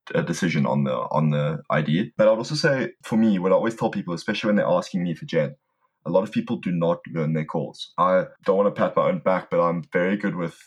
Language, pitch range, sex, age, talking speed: English, 80-110 Hz, male, 20-39, 270 wpm